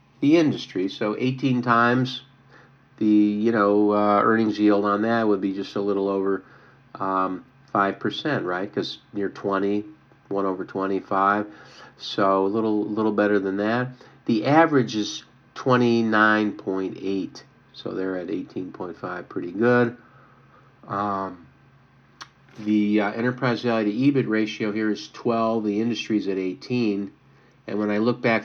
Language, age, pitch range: English, 50-69, 100-130 Hz